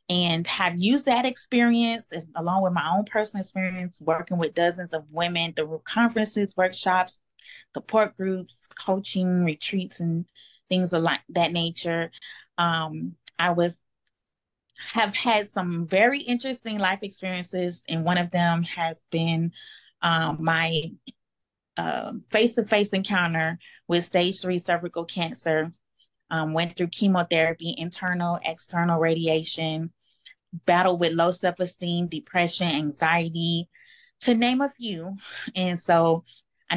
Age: 20-39